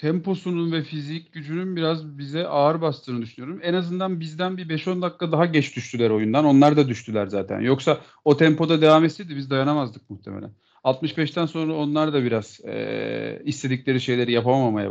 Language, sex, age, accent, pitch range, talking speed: Turkish, male, 40-59, native, 135-175 Hz, 160 wpm